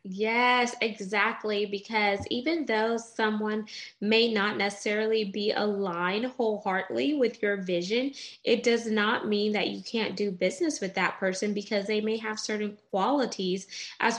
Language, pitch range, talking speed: English, 205-245 Hz, 145 wpm